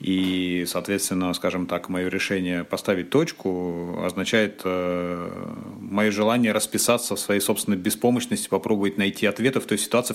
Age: 30-49